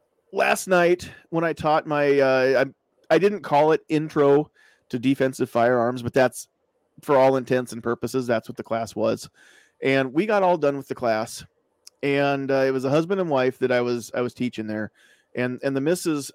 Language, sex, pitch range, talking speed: English, male, 125-155 Hz, 200 wpm